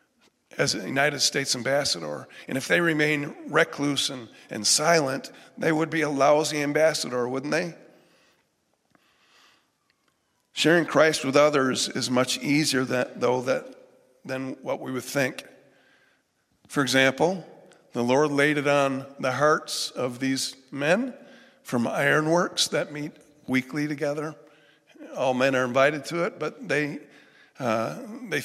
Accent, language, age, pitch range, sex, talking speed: American, English, 50-69, 130-155 Hz, male, 135 wpm